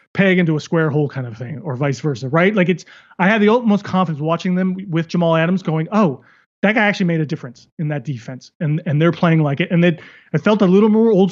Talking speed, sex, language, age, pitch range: 260 wpm, male, English, 30-49, 160-195 Hz